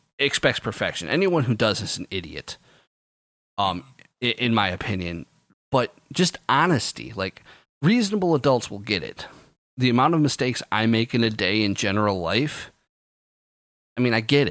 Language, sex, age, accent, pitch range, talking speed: English, male, 30-49, American, 100-125 Hz, 155 wpm